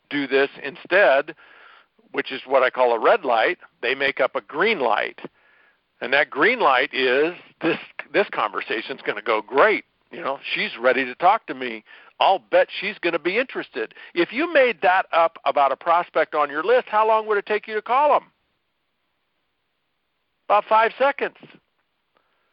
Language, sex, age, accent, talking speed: English, male, 60-79, American, 180 wpm